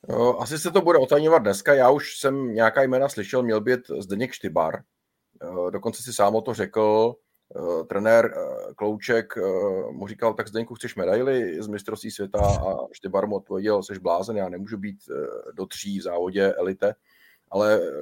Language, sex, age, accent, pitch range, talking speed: Czech, male, 30-49, native, 110-130 Hz, 155 wpm